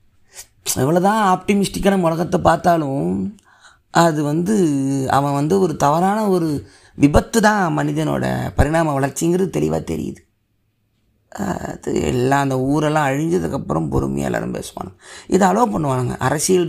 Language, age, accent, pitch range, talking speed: Tamil, 30-49, native, 110-180 Hz, 110 wpm